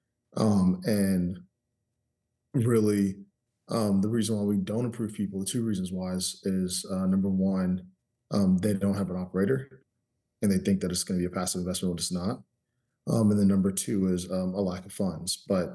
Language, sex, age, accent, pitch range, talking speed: English, male, 20-39, American, 90-105 Hz, 200 wpm